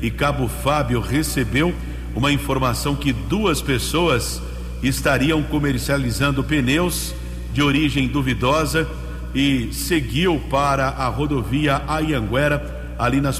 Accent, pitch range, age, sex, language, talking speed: Brazilian, 125-150 Hz, 60-79, male, English, 105 wpm